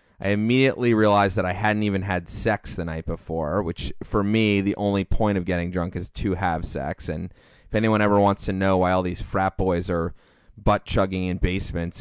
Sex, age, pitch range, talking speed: male, 30-49, 90-105 Hz, 210 wpm